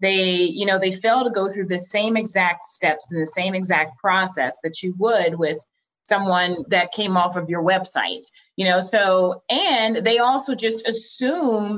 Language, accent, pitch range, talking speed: English, American, 170-215 Hz, 185 wpm